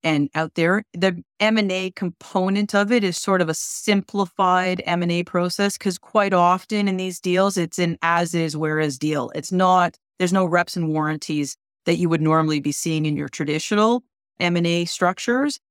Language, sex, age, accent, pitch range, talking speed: English, female, 40-59, American, 155-190 Hz, 170 wpm